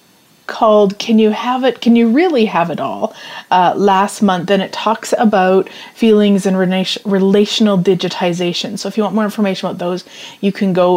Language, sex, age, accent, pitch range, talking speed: English, female, 30-49, American, 190-230 Hz, 180 wpm